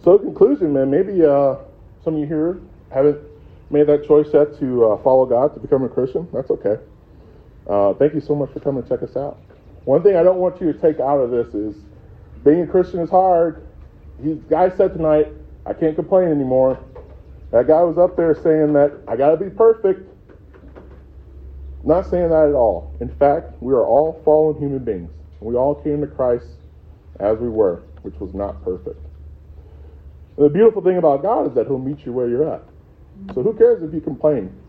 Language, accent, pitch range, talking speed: English, American, 100-170 Hz, 205 wpm